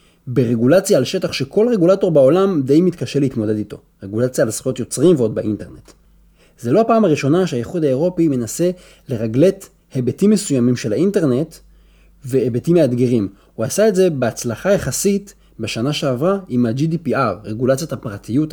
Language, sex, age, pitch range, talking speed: Hebrew, male, 30-49, 110-160 Hz, 135 wpm